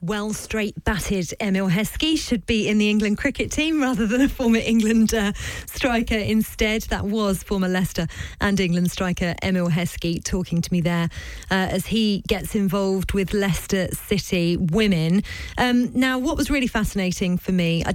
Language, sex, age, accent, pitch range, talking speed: English, female, 30-49, British, 175-215 Hz, 170 wpm